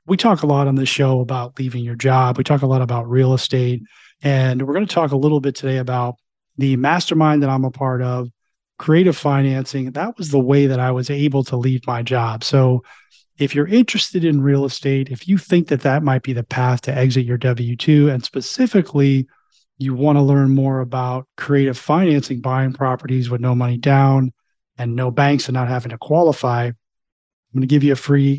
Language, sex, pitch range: English, male, 130-145 Hz